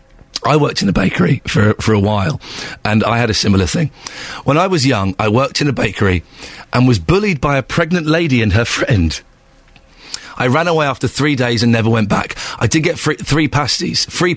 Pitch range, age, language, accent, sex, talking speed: 105-140 Hz, 40-59, English, British, male, 215 wpm